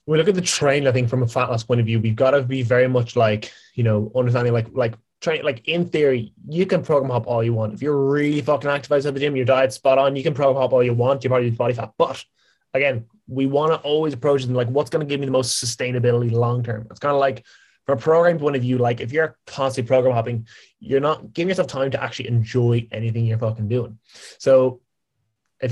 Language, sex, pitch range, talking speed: English, male, 120-140 Hz, 250 wpm